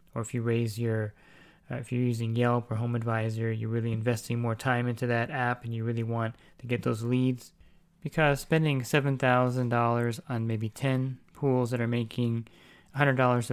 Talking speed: 175 wpm